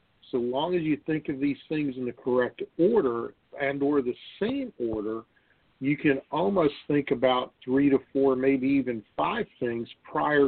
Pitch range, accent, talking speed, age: 120-140 Hz, American, 170 wpm, 50-69